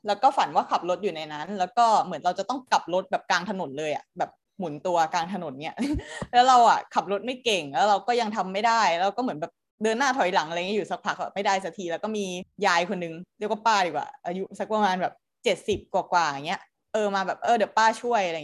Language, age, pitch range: Thai, 20-39, 180-225 Hz